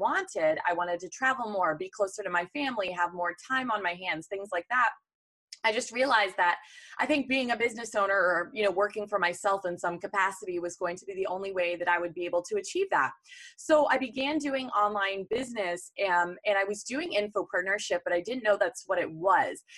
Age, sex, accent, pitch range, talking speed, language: 20-39, female, American, 180-260 Hz, 230 wpm, English